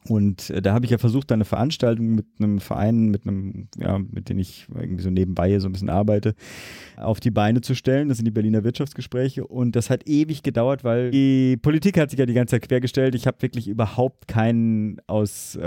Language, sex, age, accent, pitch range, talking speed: German, male, 30-49, German, 105-130 Hz, 215 wpm